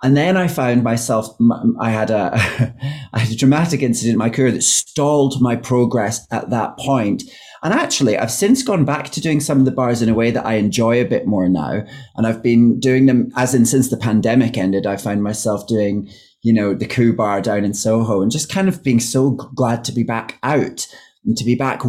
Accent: British